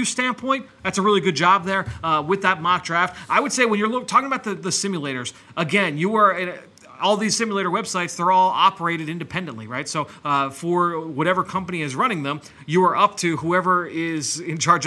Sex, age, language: male, 30-49, English